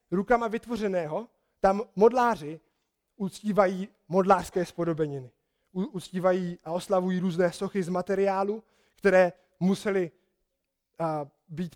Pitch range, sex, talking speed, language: 175-210 Hz, male, 85 wpm, Czech